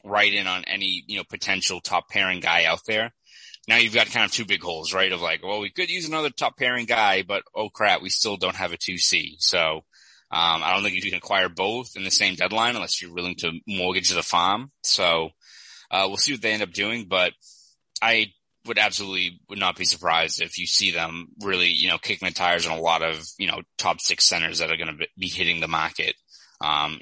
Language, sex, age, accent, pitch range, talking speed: English, male, 20-39, American, 85-100 Hz, 235 wpm